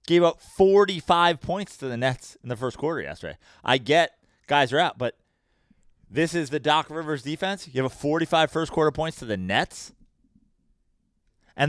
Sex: male